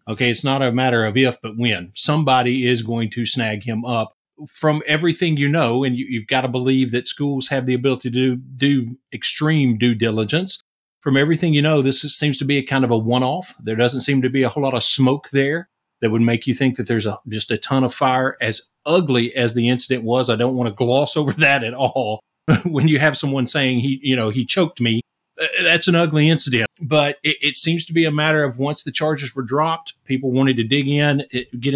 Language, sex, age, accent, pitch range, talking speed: English, male, 40-59, American, 120-145 Hz, 235 wpm